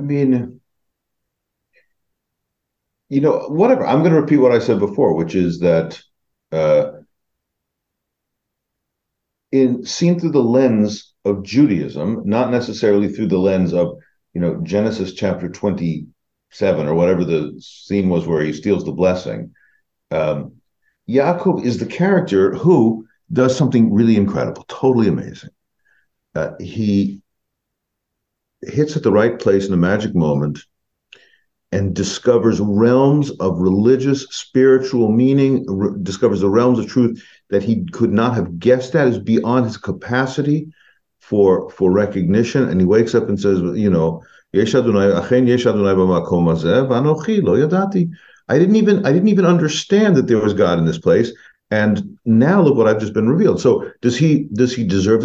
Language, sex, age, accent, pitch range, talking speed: English, male, 50-69, American, 95-135 Hz, 140 wpm